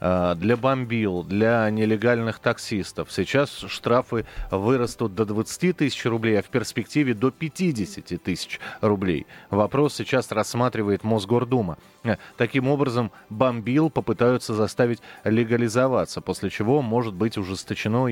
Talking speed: 115 wpm